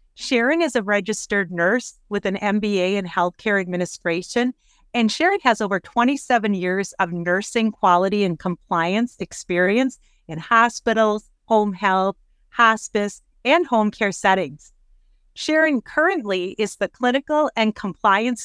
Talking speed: 125 wpm